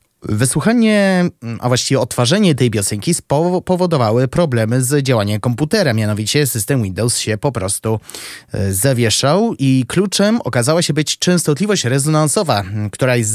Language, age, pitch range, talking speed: Polish, 20-39, 110-150 Hz, 120 wpm